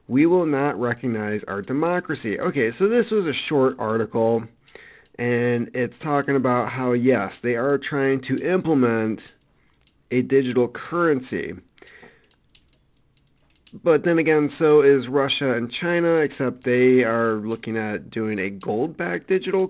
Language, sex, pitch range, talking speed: English, male, 115-150 Hz, 135 wpm